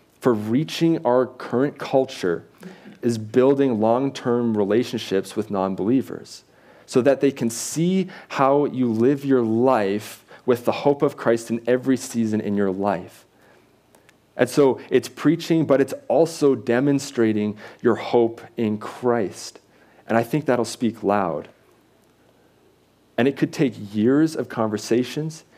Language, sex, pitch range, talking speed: English, male, 110-140 Hz, 135 wpm